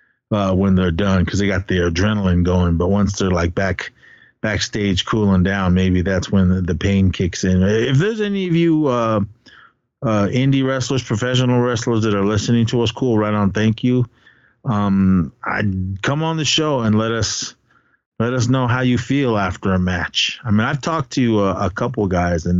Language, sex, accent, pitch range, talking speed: English, male, American, 95-125 Hz, 195 wpm